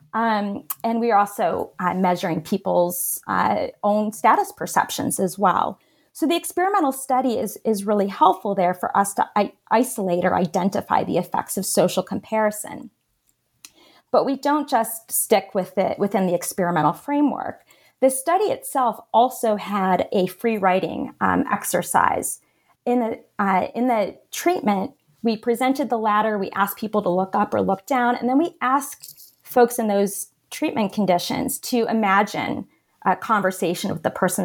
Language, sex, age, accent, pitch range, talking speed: English, female, 30-49, American, 195-245 Hz, 160 wpm